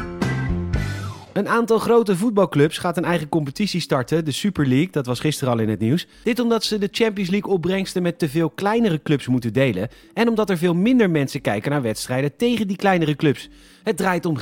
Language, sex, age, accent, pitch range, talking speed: Dutch, male, 30-49, Dutch, 135-190 Hz, 205 wpm